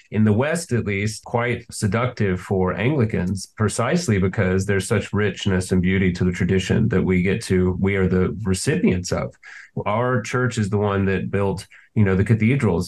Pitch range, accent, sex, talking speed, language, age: 95-110 Hz, American, male, 180 wpm, English, 30-49